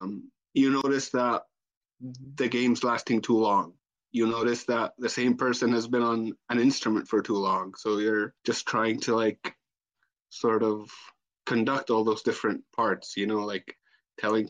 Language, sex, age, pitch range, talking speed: English, male, 20-39, 110-125 Hz, 165 wpm